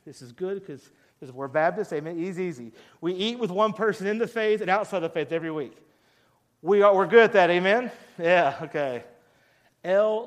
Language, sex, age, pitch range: English, male, 40-59, 135-180 Hz